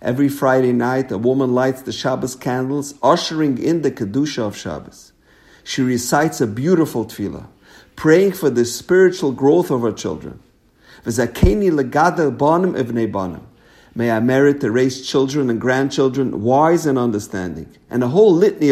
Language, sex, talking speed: English, male, 140 wpm